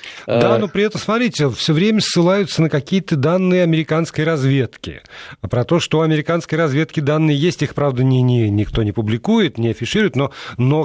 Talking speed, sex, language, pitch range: 175 wpm, male, Russian, 125-165 Hz